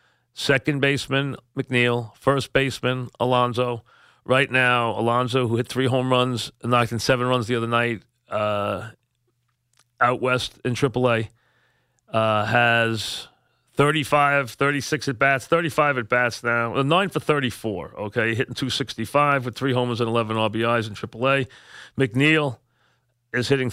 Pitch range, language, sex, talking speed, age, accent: 115-130 Hz, English, male, 130 wpm, 40-59, American